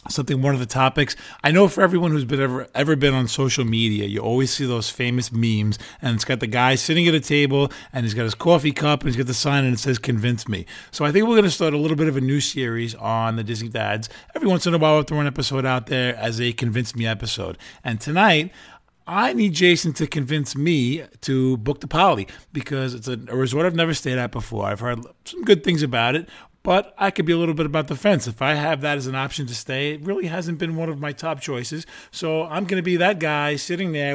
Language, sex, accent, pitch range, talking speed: English, male, American, 125-165 Hz, 255 wpm